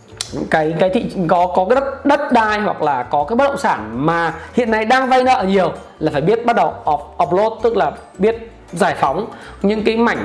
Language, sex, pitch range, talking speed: Vietnamese, male, 170-230 Hz, 225 wpm